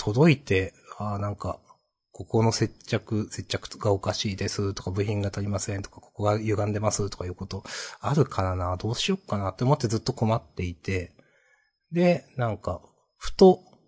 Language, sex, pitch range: Japanese, male, 95-120 Hz